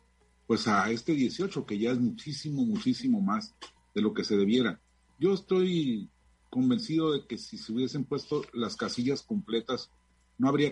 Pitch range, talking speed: 105-175 Hz, 160 wpm